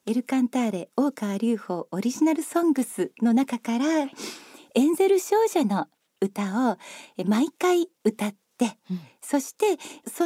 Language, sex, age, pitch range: Japanese, female, 40-59, 220-310 Hz